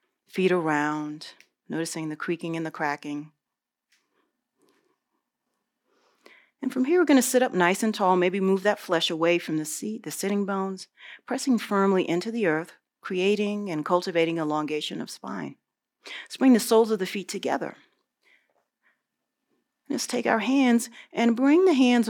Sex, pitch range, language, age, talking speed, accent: female, 165-240 Hz, English, 40-59, 150 wpm, American